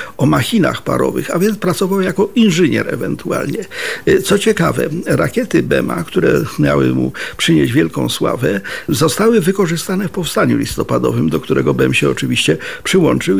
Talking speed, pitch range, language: 135 wpm, 150-195 Hz, Polish